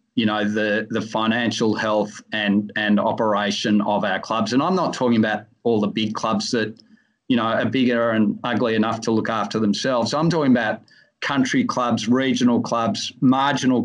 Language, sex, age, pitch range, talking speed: English, male, 40-59, 110-135 Hz, 180 wpm